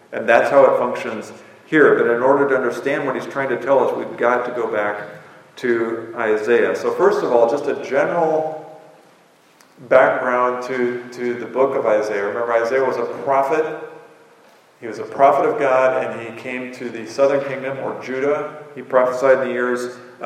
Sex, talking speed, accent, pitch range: male, 190 wpm, American, 125-160 Hz